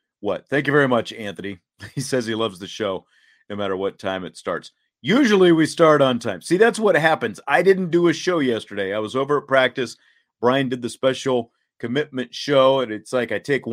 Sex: male